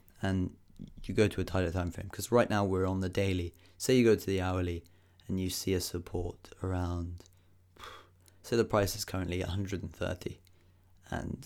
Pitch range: 90-100 Hz